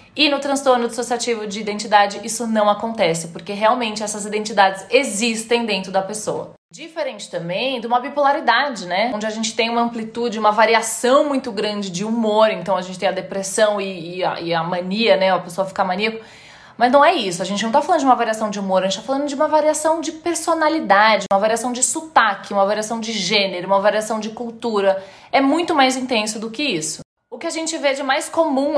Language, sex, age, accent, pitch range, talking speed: Portuguese, female, 20-39, Brazilian, 195-260 Hz, 215 wpm